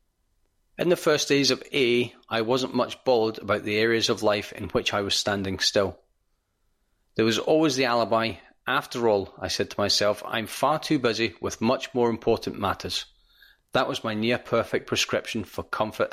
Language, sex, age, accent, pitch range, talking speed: English, male, 40-59, British, 105-125 Hz, 180 wpm